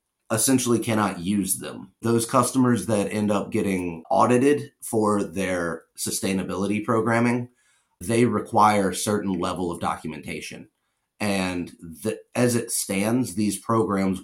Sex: male